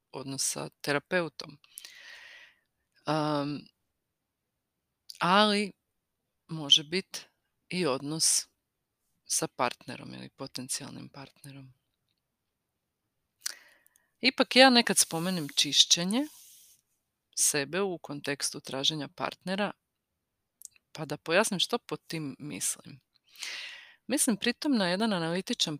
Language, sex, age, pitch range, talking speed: Croatian, female, 40-59, 145-210 Hz, 85 wpm